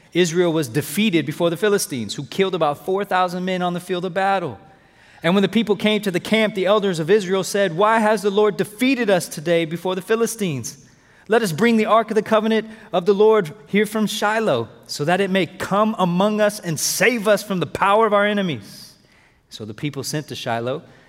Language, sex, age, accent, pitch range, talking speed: English, male, 30-49, American, 130-190 Hz, 215 wpm